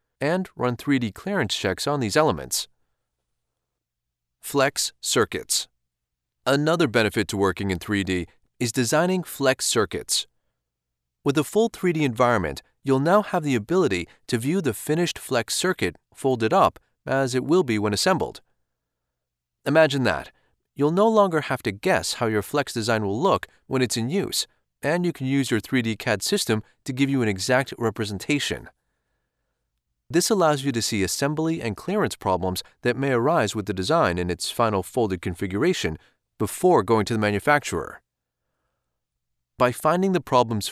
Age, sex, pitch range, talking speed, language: 30-49, male, 95-145 Hz, 155 wpm, English